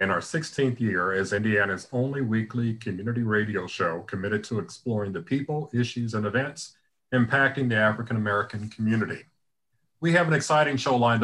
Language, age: English, 40-59